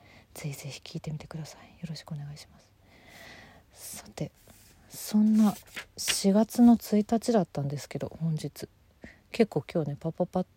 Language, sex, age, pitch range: Japanese, female, 40-59, 140-185 Hz